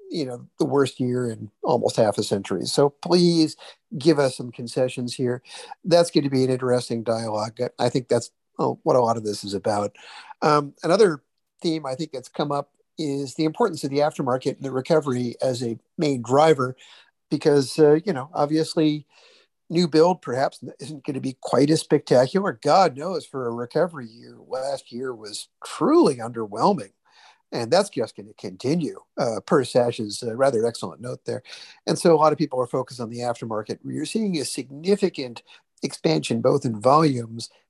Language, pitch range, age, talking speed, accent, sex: English, 120-155 Hz, 50-69, 180 wpm, American, male